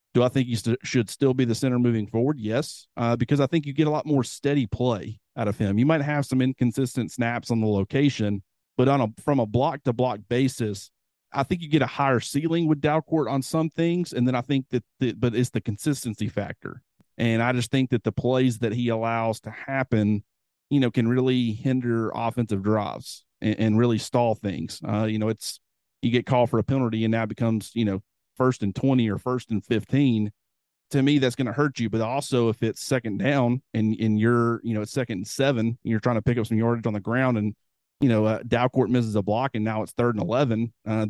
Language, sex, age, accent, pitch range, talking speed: English, male, 40-59, American, 110-135 Hz, 240 wpm